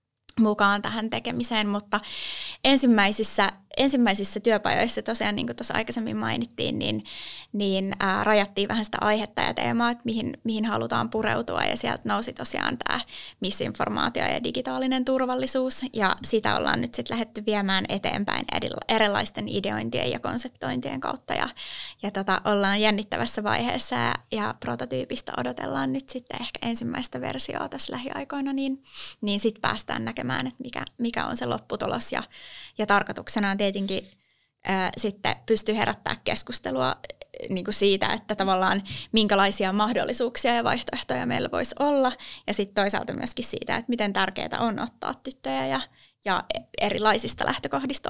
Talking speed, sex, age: 140 wpm, female, 20-39